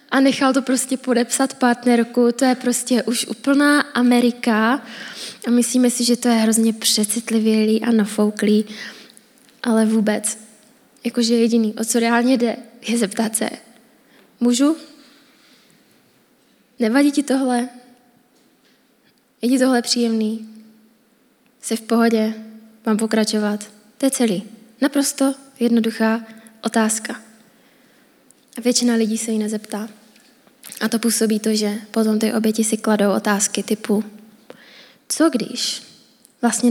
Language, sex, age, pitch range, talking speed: Czech, female, 20-39, 220-255 Hz, 120 wpm